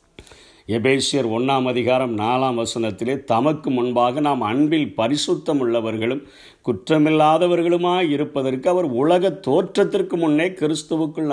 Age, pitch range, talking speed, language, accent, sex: 50-69, 125-160 Hz, 90 wpm, Tamil, native, male